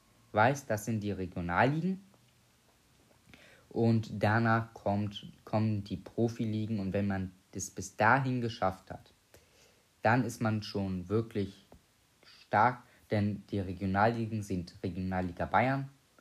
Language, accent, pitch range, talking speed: German, German, 100-120 Hz, 115 wpm